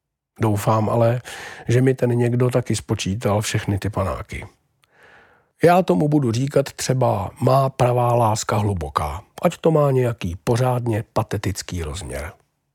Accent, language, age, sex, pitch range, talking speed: native, Czech, 50-69, male, 105-130 Hz, 125 wpm